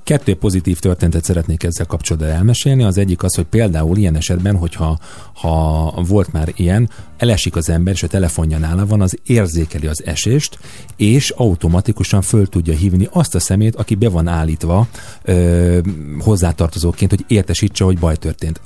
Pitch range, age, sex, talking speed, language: 85-110 Hz, 40-59, male, 160 wpm, Hungarian